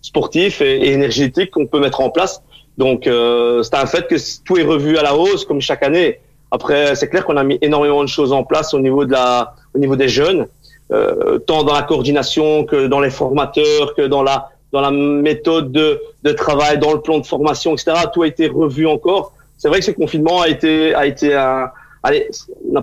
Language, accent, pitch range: French, French, 140-165 Hz